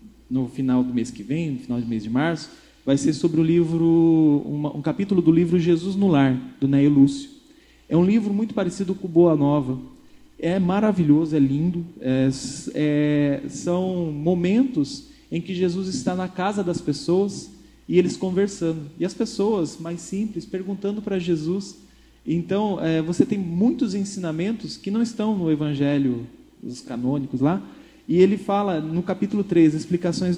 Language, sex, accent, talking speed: Portuguese, male, Brazilian, 165 wpm